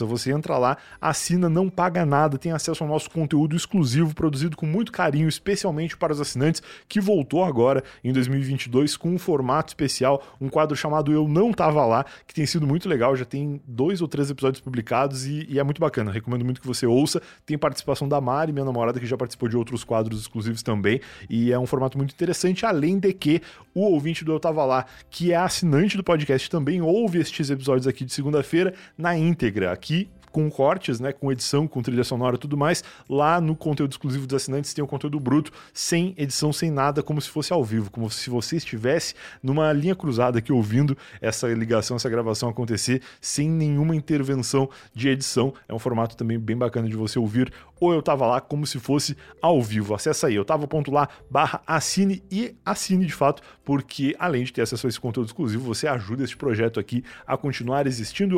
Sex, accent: male, Brazilian